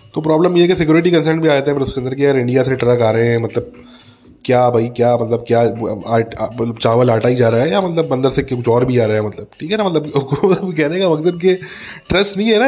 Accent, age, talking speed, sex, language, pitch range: Indian, 20-39, 200 wpm, male, English, 120-155 Hz